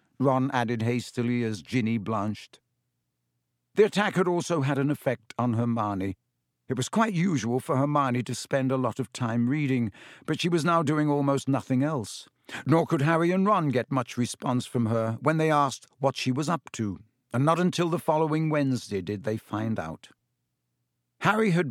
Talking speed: 180 wpm